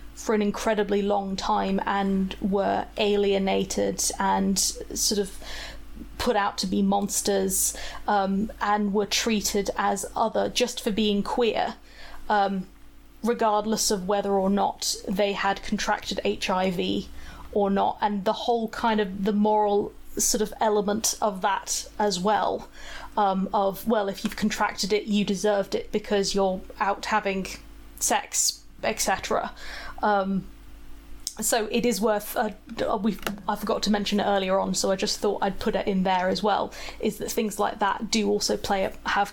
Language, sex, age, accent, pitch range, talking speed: English, female, 20-39, British, 195-215 Hz, 155 wpm